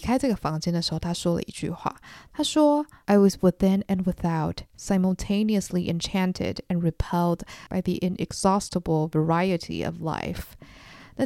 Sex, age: female, 20-39